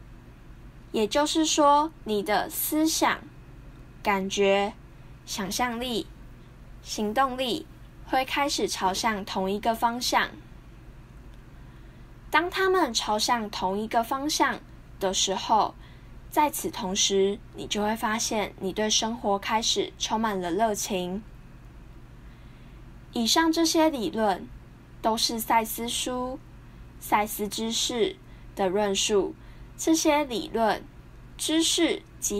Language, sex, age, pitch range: Chinese, female, 10-29, 210-290 Hz